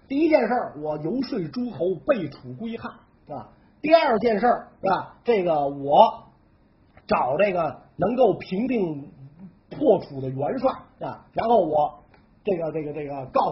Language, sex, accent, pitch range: Chinese, male, native, 190-265 Hz